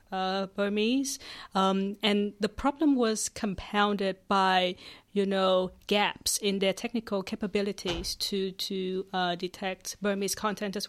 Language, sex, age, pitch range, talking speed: English, female, 40-59, 185-205 Hz, 125 wpm